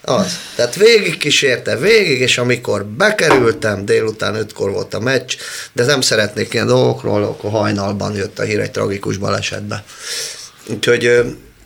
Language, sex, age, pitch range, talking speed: Hungarian, male, 30-49, 100-120 Hz, 140 wpm